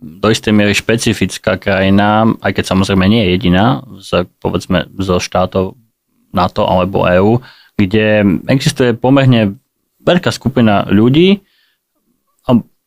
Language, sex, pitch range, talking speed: Slovak, male, 95-115 Hz, 115 wpm